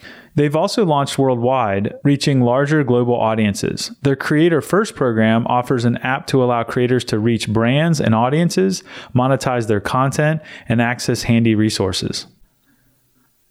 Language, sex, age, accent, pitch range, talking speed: English, male, 30-49, American, 110-140 Hz, 135 wpm